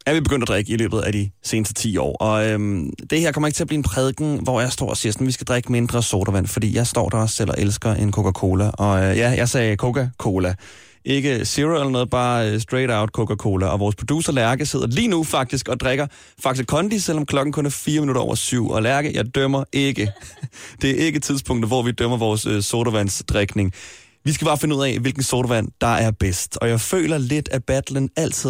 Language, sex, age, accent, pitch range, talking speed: Danish, male, 30-49, native, 110-135 Hz, 230 wpm